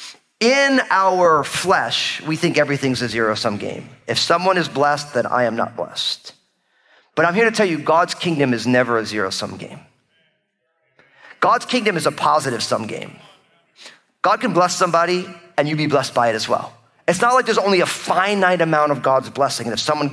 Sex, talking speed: male, 190 wpm